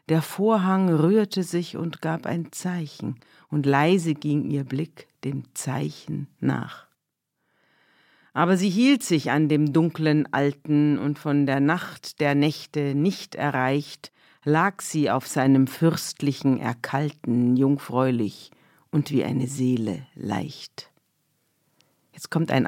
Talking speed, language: 125 wpm, German